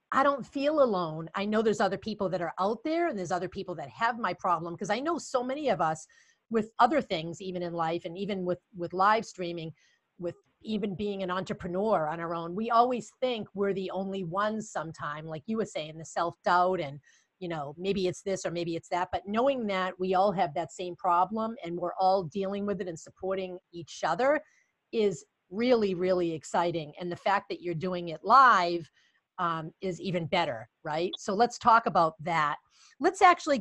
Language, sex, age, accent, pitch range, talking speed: English, female, 40-59, American, 175-230 Hz, 210 wpm